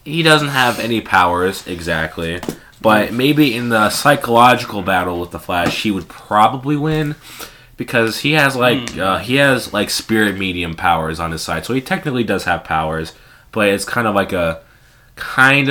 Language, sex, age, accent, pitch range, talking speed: English, male, 20-39, American, 90-115 Hz, 175 wpm